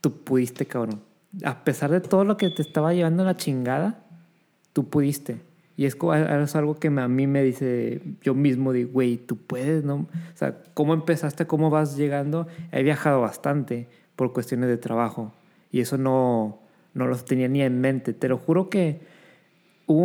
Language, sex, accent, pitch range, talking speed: Spanish, male, Mexican, 130-165 Hz, 180 wpm